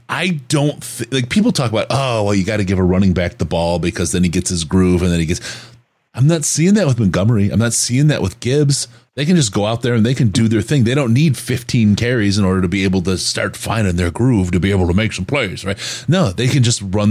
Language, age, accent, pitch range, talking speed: English, 30-49, American, 95-125 Hz, 280 wpm